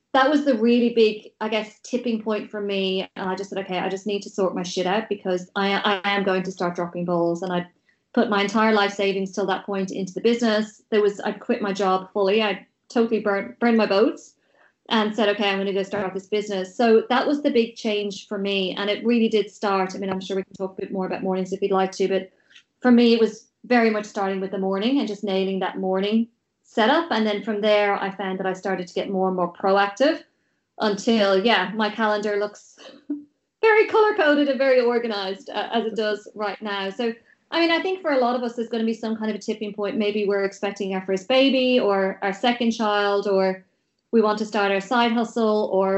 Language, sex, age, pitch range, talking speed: English, female, 30-49, 195-230 Hz, 245 wpm